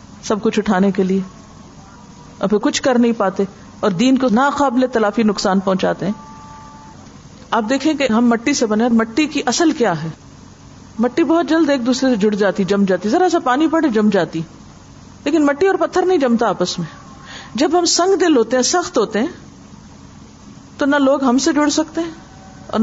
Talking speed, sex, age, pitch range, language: 195 wpm, female, 50-69, 190-285 Hz, Urdu